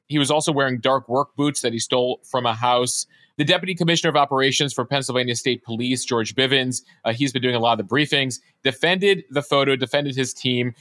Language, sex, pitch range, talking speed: English, male, 120-145 Hz, 210 wpm